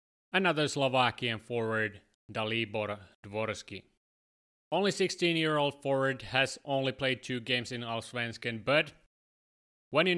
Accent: Finnish